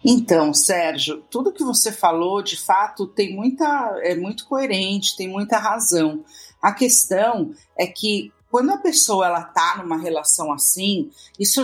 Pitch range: 170-235 Hz